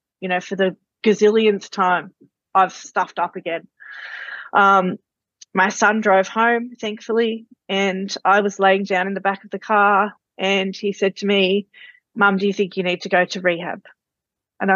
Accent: Australian